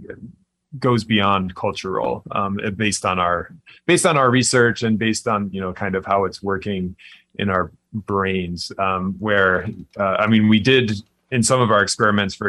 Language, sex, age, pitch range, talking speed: English, male, 30-49, 95-110 Hz, 180 wpm